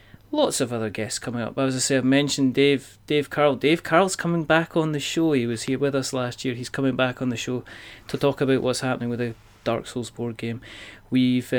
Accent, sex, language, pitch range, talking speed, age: British, male, English, 110-135 Hz, 245 wpm, 30-49